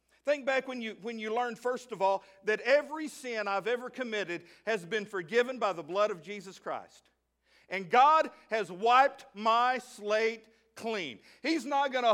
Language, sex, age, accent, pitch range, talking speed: English, male, 50-69, American, 205-275 Hz, 180 wpm